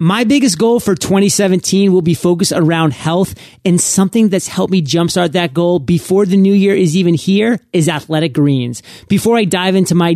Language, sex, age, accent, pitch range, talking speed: English, male, 30-49, American, 155-185 Hz, 195 wpm